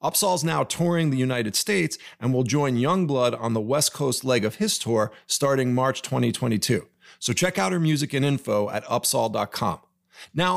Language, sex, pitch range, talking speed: English, male, 115-160 Hz, 175 wpm